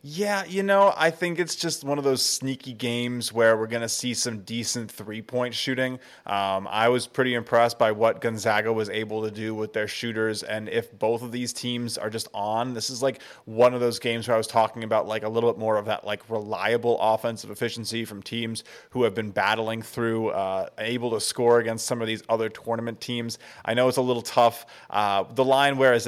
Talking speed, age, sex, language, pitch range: 225 wpm, 20-39, male, English, 110-125 Hz